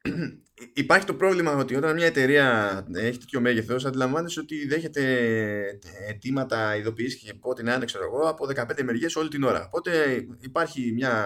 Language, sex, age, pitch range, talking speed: Greek, male, 20-39, 115-165 Hz, 125 wpm